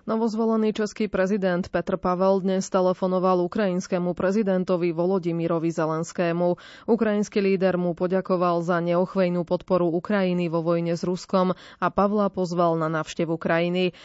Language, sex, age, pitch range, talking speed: Slovak, female, 20-39, 175-205 Hz, 125 wpm